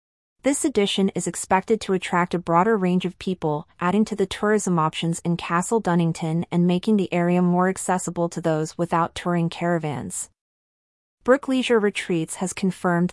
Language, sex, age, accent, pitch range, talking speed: English, female, 30-49, American, 170-205 Hz, 160 wpm